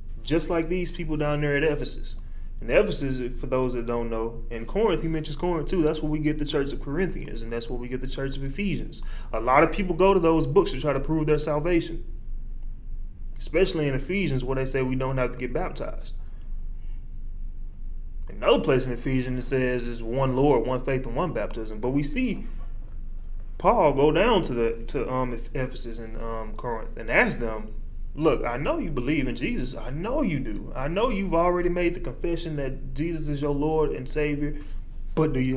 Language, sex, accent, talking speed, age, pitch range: English, male, American, 210 wpm, 20-39, 120-160 Hz